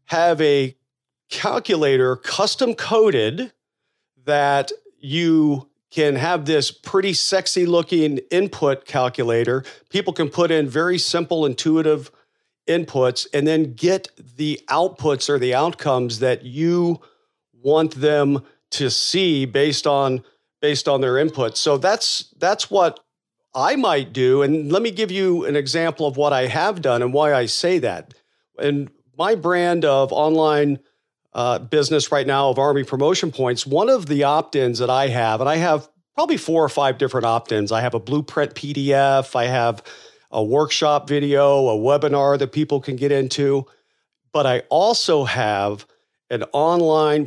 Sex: male